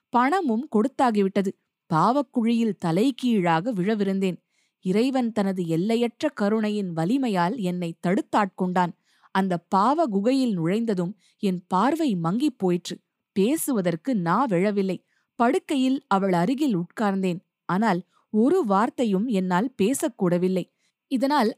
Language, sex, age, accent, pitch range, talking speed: Tamil, female, 20-39, native, 185-255 Hz, 90 wpm